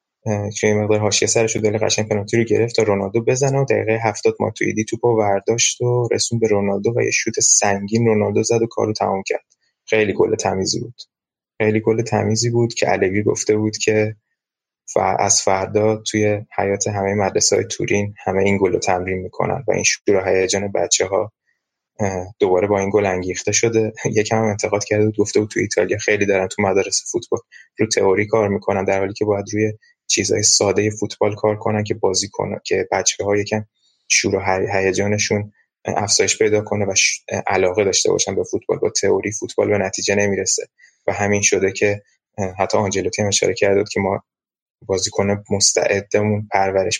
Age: 20-39